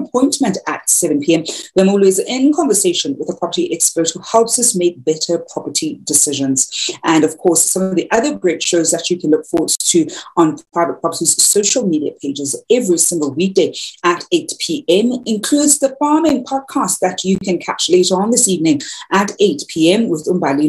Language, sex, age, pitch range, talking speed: English, female, 40-59, 165-270 Hz, 185 wpm